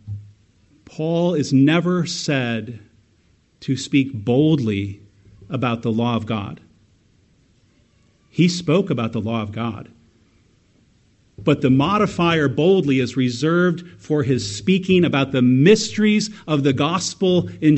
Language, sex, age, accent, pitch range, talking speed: English, male, 50-69, American, 105-145 Hz, 120 wpm